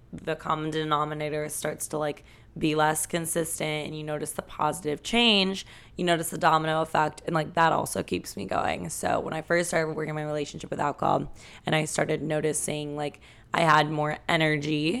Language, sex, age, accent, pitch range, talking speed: English, female, 20-39, American, 150-165 Hz, 185 wpm